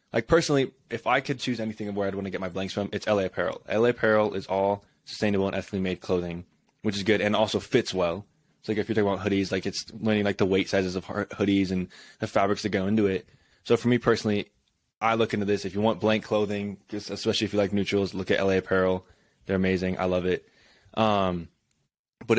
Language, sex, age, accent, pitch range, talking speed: English, male, 20-39, American, 95-105 Hz, 235 wpm